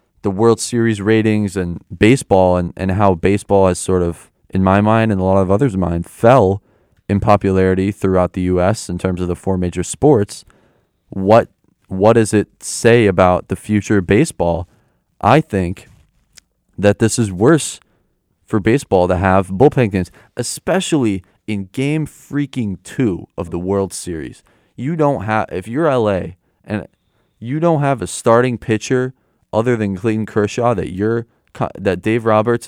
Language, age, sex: English, 20-39, male